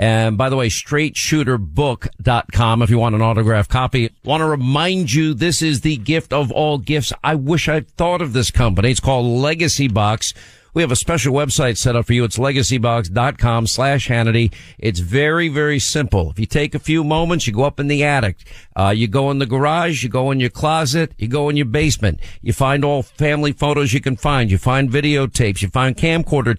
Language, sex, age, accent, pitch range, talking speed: English, male, 50-69, American, 115-150 Hz, 210 wpm